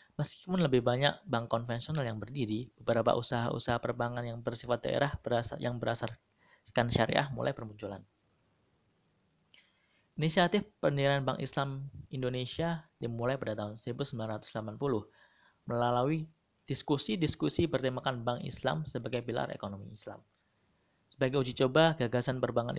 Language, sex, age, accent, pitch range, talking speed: Indonesian, male, 20-39, native, 110-140 Hz, 110 wpm